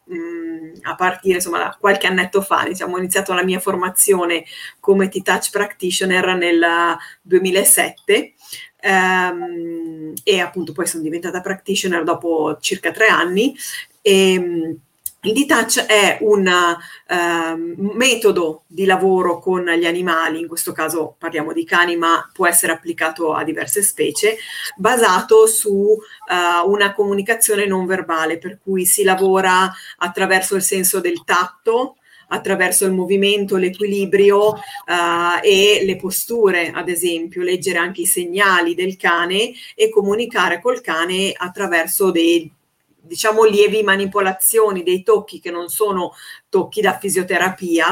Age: 30-49